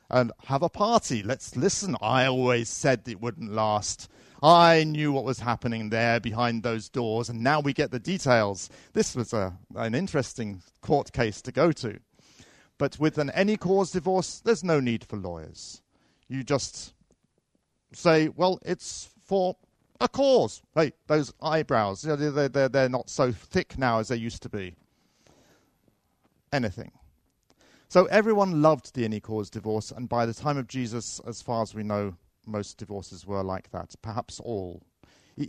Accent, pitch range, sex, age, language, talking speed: British, 110-145 Hz, male, 40-59, Danish, 160 wpm